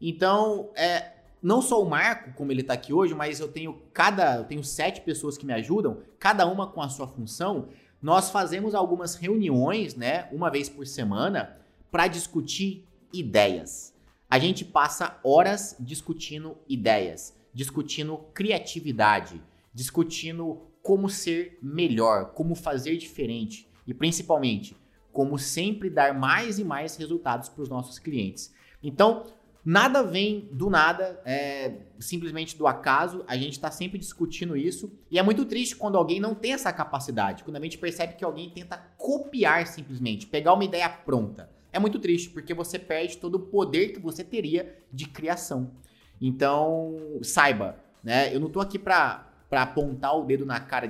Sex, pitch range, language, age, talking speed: male, 135-185 Hz, Portuguese, 30-49, 155 wpm